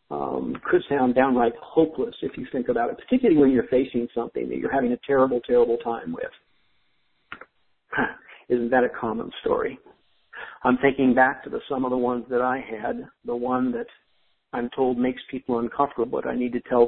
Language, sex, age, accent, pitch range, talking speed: English, male, 50-69, American, 120-160 Hz, 190 wpm